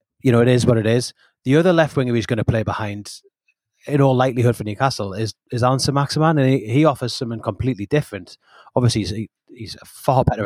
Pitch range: 115-140 Hz